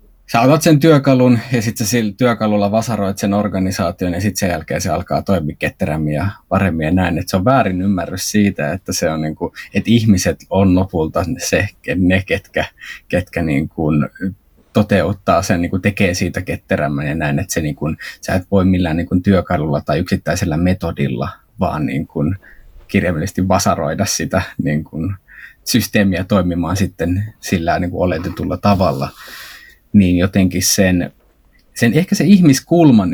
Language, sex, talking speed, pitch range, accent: Finnish, male, 155 wpm, 85-105 Hz, native